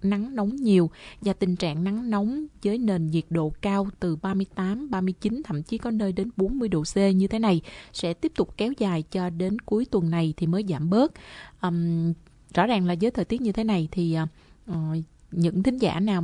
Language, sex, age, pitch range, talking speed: Vietnamese, female, 20-39, 170-205 Hz, 210 wpm